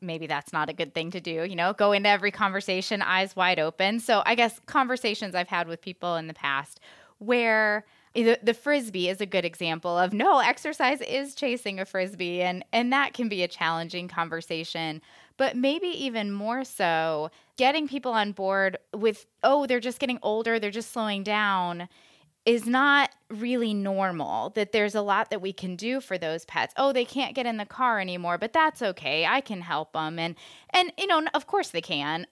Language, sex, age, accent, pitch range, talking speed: English, female, 20-39, American, 180-250 Hz, 200 wpm